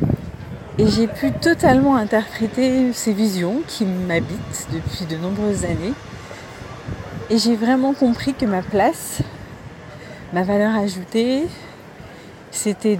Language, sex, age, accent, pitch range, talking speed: French, female, 40-59, French, 175-230 Hz, 110 wpm